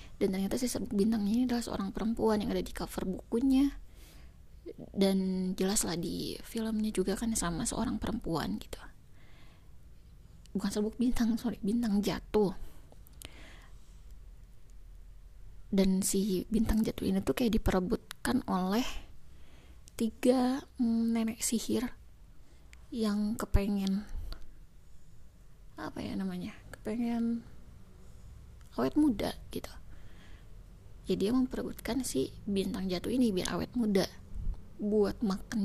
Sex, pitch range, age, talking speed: female, 180-235 Hz, 20-39, 110 wpm